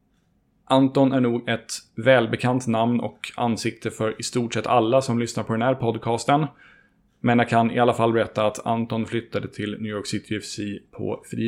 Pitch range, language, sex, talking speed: 105-125 Hz, Swedish, male, 190 wpm